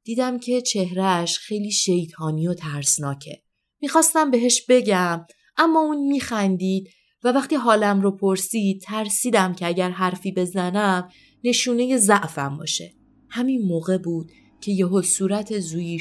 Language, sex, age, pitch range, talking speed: Persian, female, 30-49, 160-205 Hz, 125 wpm